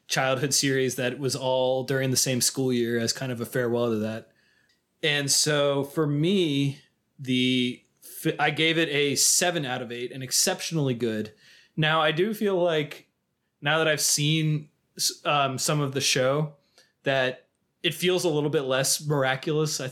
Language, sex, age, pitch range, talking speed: English, male, 20-39, 130-160 Hz, 170 wpm